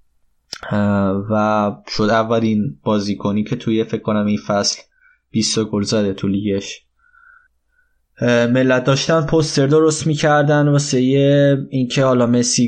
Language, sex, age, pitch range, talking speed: Persian, male, 20-39, 105-125 Hz, 115 wpm